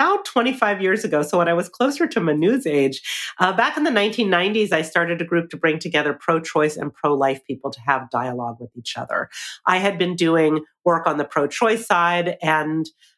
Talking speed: 195 wpm